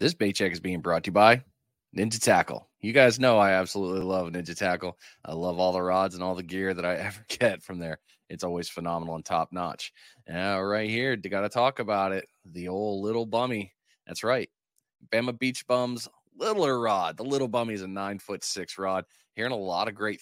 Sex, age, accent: male, 20-39, American